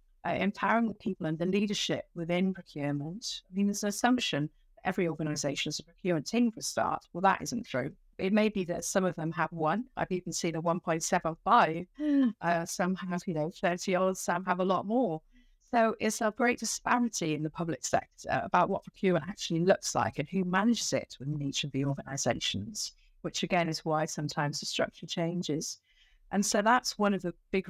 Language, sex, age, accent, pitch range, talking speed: English, female, 50-69, British, 160-200 Hz, 200 wpm